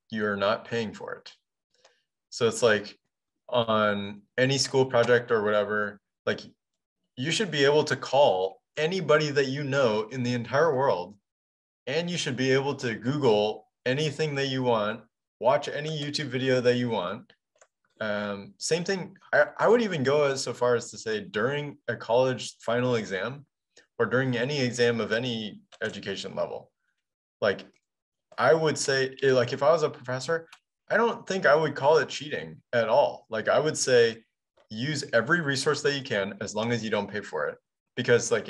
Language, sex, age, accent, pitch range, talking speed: English, male, 20-39, American, 110-140 Hz, 180 wpm